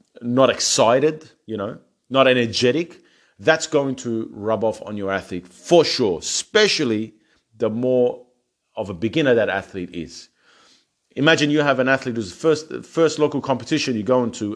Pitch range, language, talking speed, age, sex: 110-140 Hz, English, 160 wpm, 30-49, male